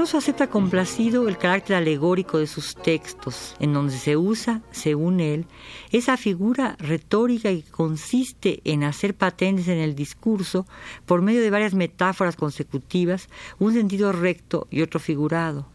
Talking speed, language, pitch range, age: 145 wpm, Spanish, 150-190 Hz, 50-69